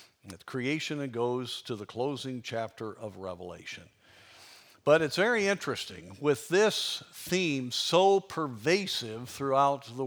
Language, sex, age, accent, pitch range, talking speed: English, male, 50-69, American, 110-140 Hz, 125 wpm